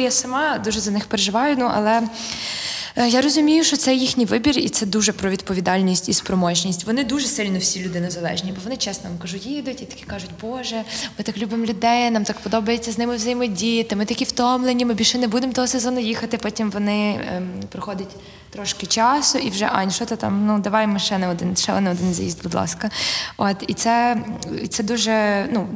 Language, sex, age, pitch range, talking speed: Ukrainian, female, 20-39, 195-245 Hz, 205 wpm